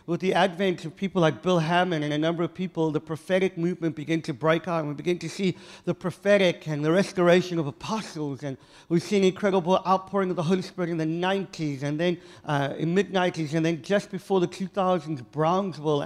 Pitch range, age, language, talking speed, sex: 160-200 Hz, 50-69, English, 210 wpm, male